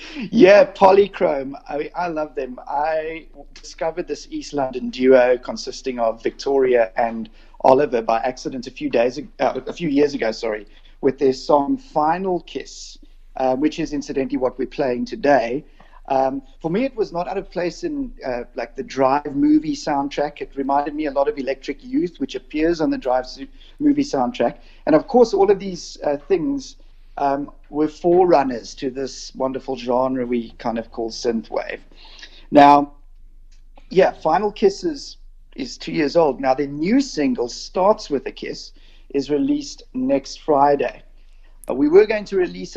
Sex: male